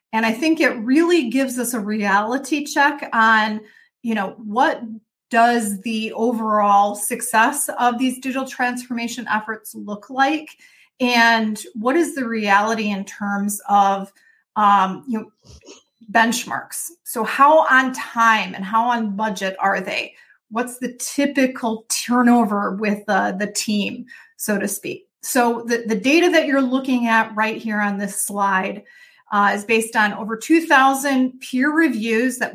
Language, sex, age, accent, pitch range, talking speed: English, female, 30-49, American, 210-260 Hz, 150 wpm